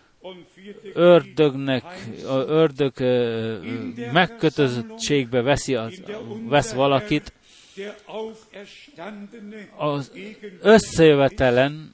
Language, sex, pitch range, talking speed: Hungarian, male, 140-195 Hz, 50 wpm